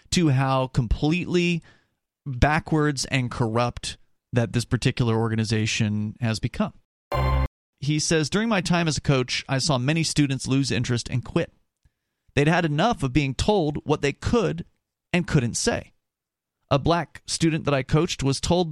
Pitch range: 125-175 Hz